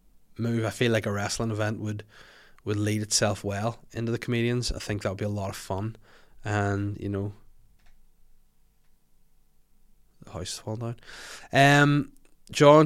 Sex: male